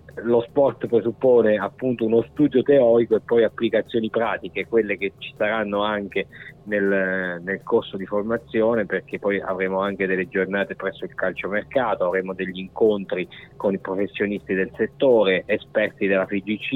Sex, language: male, Italian